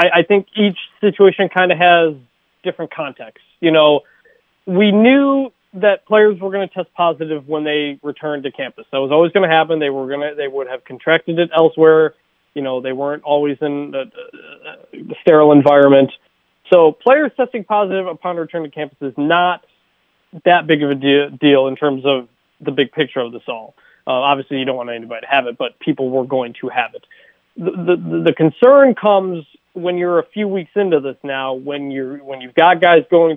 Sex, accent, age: male, American, 20-39